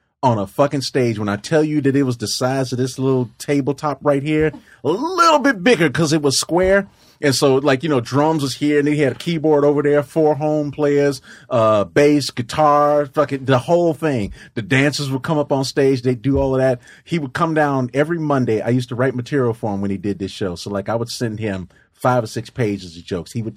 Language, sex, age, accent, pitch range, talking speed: English, male, 30-49, American, 105-140 Hz, 245 wpm